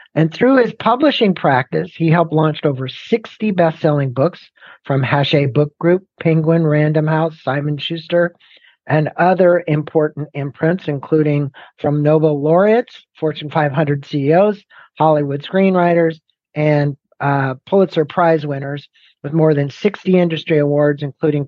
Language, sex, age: English, male, 50-69